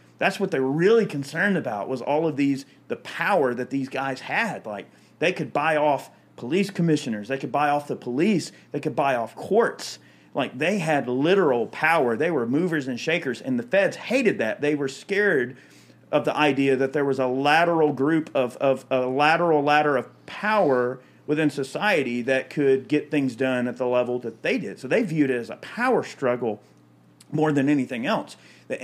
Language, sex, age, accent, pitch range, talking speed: English, male, 40-59, American, 125-150 Hz, 200 wpm